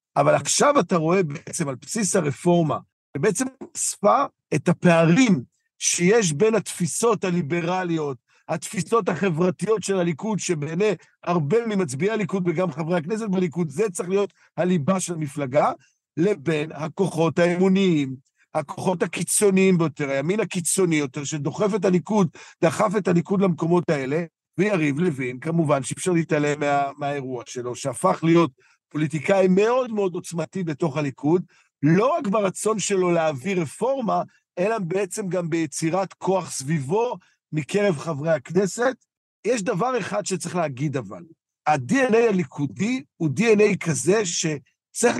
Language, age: Hebrew, 50-69